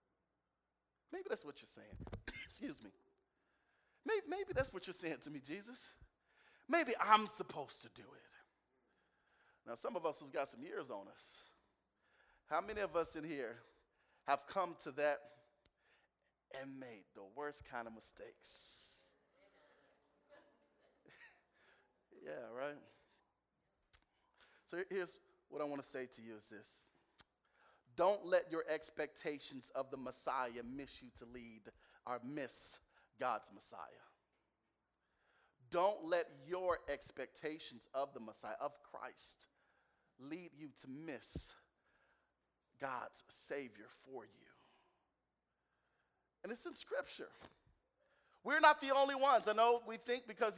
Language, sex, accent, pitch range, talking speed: English, male, American, 145-230 Hz, 130 wpm